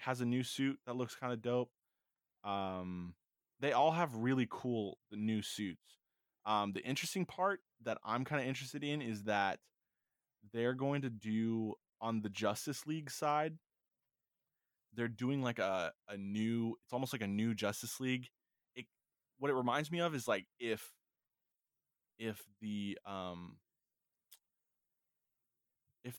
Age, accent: 20-39, American